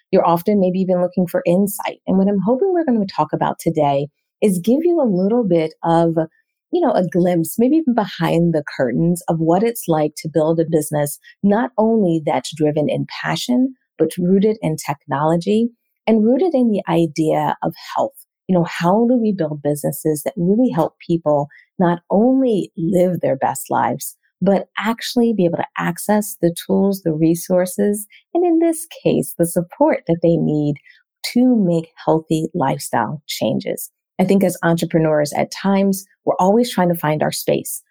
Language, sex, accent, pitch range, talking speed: English, female, American, 160-210 Hz, 175 wpm